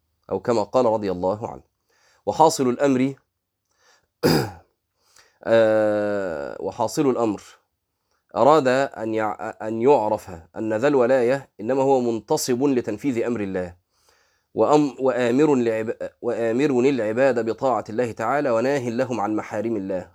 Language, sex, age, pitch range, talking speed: Arabic, male, 30-49, 105-135 Hz, 90 wpm